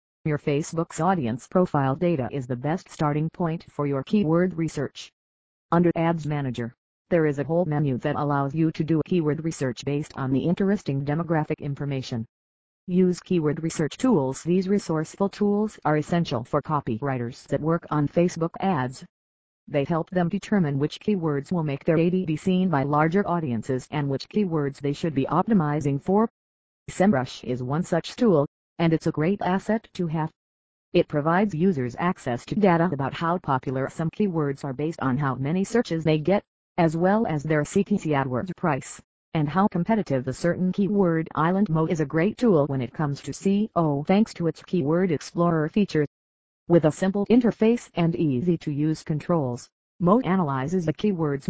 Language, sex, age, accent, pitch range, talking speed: English, female, 40-59, American, 140-180 Hz, 170 wpm